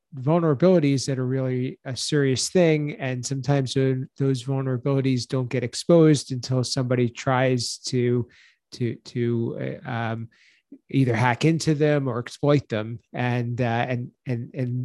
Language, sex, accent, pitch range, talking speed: English, male, American, 120-145 Hz, 135 wpm